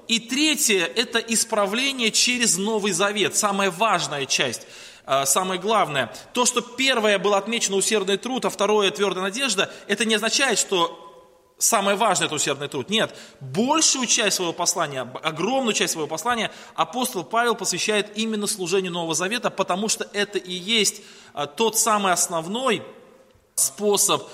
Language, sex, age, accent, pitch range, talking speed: Russian, male, 20-39, native, 180-220 Hz, 150 wpm